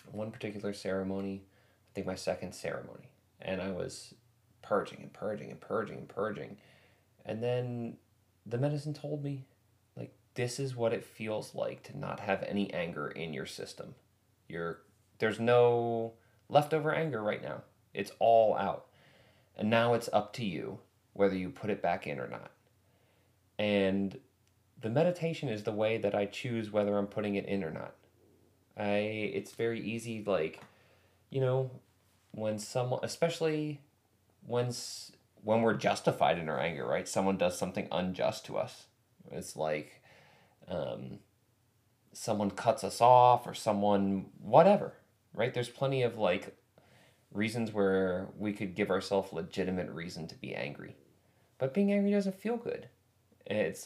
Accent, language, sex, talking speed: American, English, male, 150 wpm